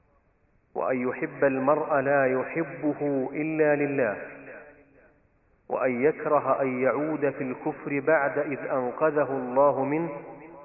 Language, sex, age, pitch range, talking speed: Arabic, male, 40-59, 130-150 Hz, 100 wpm